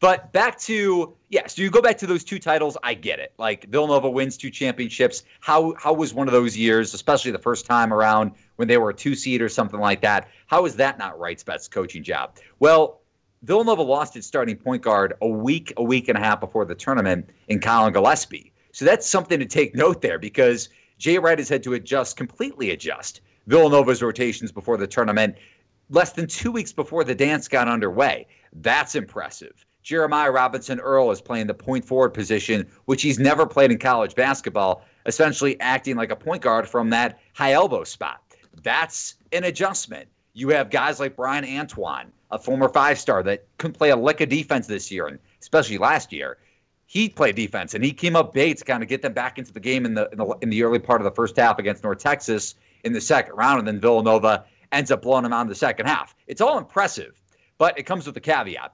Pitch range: 115-155 Hz